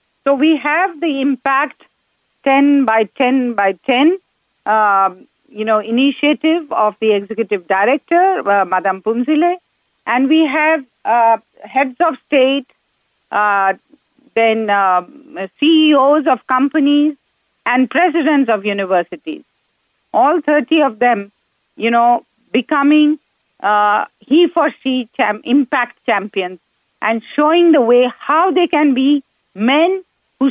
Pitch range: 215-300 Hz